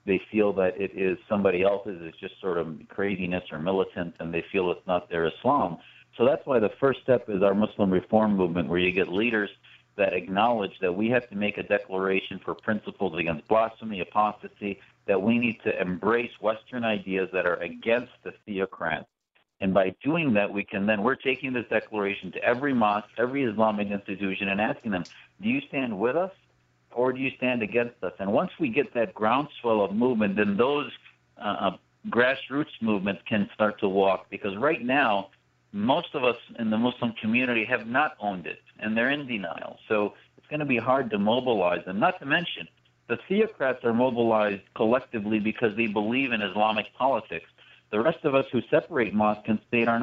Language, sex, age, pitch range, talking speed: English, male, 60-79, 100-120 Hz, 195 wpm